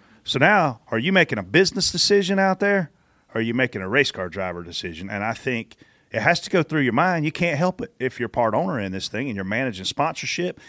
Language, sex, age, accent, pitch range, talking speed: English, male, 40-59, American, 110-145 Hz, 245 wpm